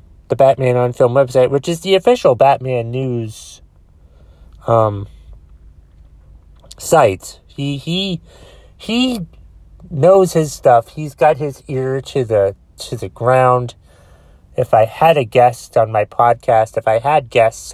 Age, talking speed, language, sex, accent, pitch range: 30-49, 135 wpm, English, male, American, 85-140 Hz